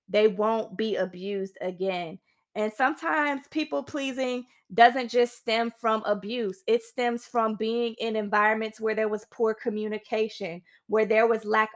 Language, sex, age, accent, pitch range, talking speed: English, female, 20-39, American, 195-245 Hz, 150 wpm